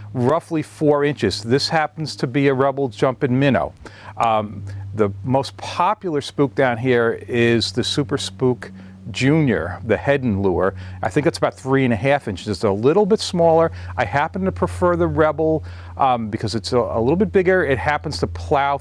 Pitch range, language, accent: 110-145 Hz, English, American